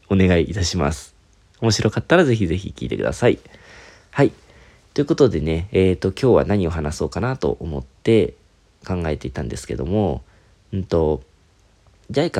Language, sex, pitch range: Japanese, male, 85-115 Hz